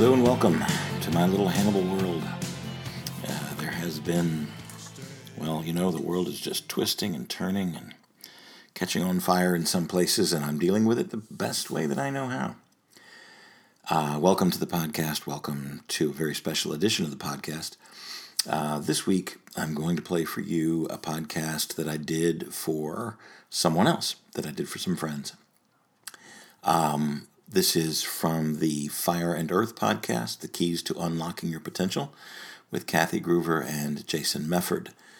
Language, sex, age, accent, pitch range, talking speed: English, male, 50-69, American, 75-85 Hz, 170 wpm